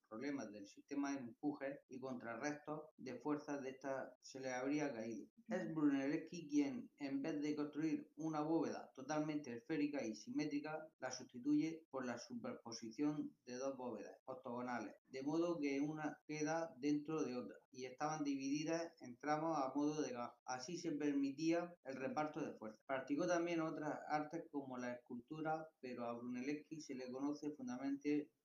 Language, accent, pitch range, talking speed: Spanish, Spanish, 125-160 Hz, 160 wpm